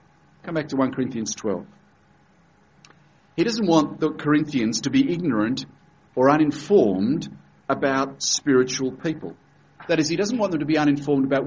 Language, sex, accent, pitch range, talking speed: English, male, Australian, 140-175 Hz, 150 wpm